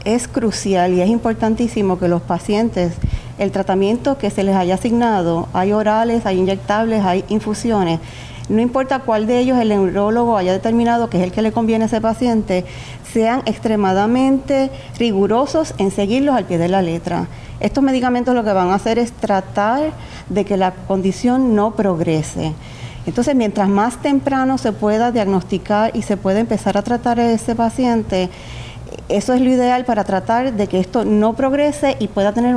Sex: female